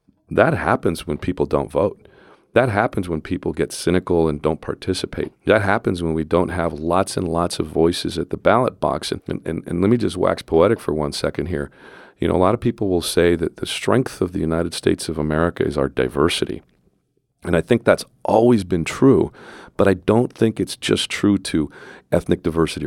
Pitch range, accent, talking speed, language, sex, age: 80-100 Hz, American, 205 wpm, English, male, 40-59